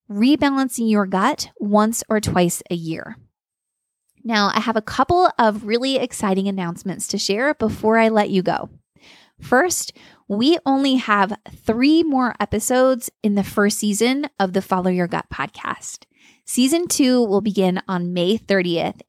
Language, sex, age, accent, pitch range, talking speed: English, female, 20-39, American, 190-245 Hz, 150 wpm